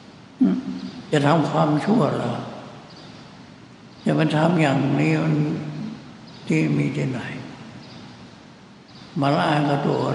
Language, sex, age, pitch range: Thai, male, 60-79, 135-150 Hz